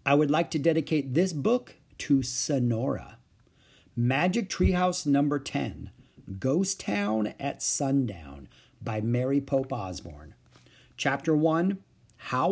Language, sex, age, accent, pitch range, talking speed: English, male, 50-69, American, 115-165 Hz, 115 wpm